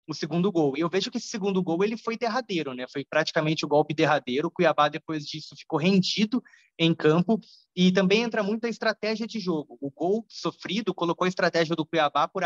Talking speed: 215 wpm